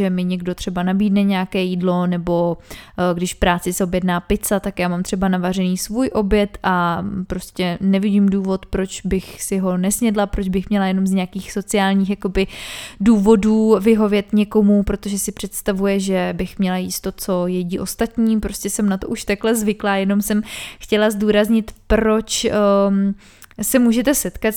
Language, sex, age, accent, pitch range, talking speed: Czech, female, 20-39, native, 195-220 Hz, 165 wpm